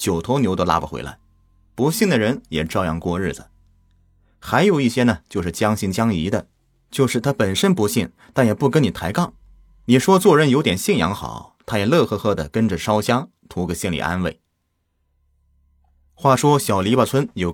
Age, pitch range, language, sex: 30-49, 85-125 Hz, Chinese, male